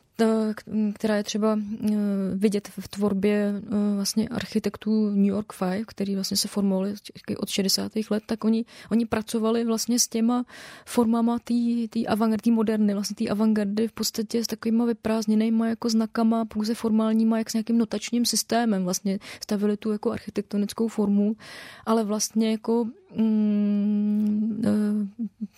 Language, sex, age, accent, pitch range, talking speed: Czech, female, 20-39, native, 210-230 Hz, 130 wpm